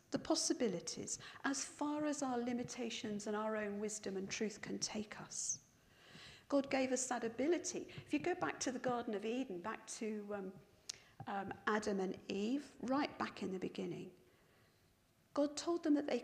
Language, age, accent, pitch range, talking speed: English, 50-69, British, 210-275 Hz, 175 wpm